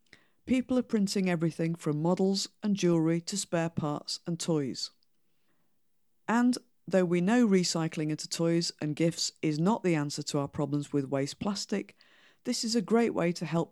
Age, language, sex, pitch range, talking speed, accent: 50-69, English, female, 160-195 Hz, 170 wpm, British